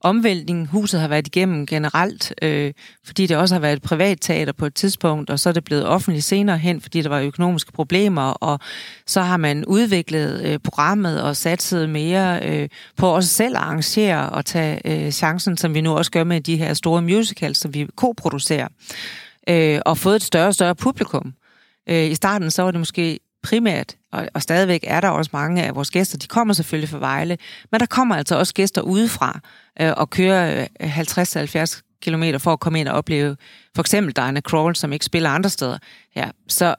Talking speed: 200 wpm